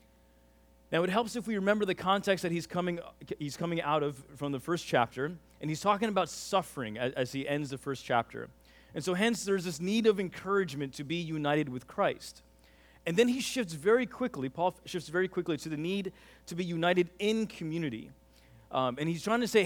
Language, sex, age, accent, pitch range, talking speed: English, male, 30-49, American, 125-195 Hz, 210 wpm